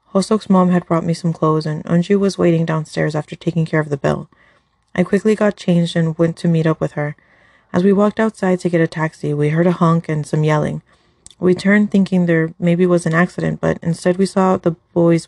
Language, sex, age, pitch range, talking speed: English, female, 30-49, 155-185 Hz, 230 wpm